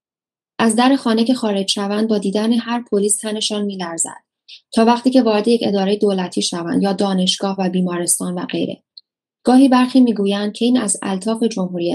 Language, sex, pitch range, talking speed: Persian, female, 185-230 Hz, 170 wpm